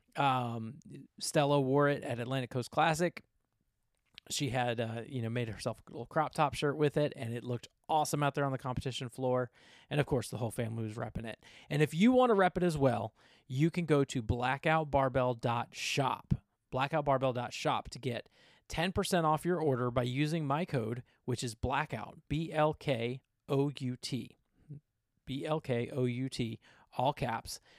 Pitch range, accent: 120-150 Hz, American